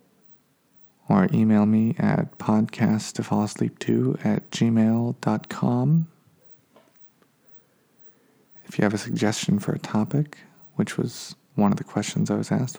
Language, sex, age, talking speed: English, male, 40-59, 115 wpm